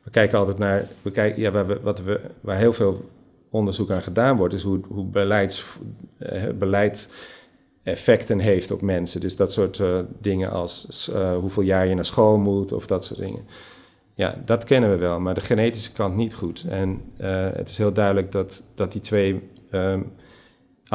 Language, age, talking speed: Dutch, 40-59, 170 wpm